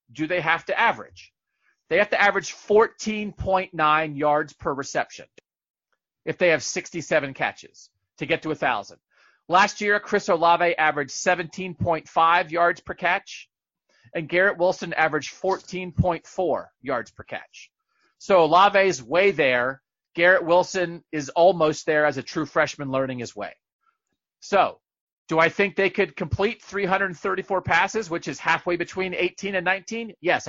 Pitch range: 165-200 Hz